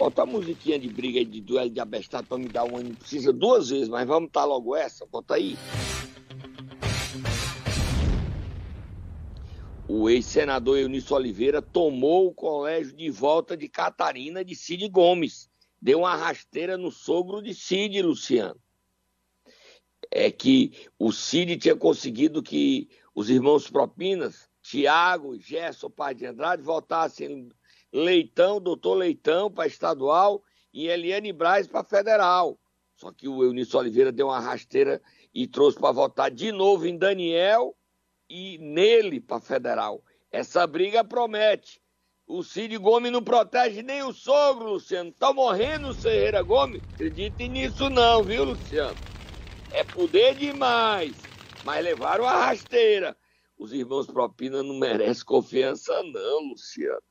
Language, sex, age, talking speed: Portuguese, male, 60-79, 135 wpm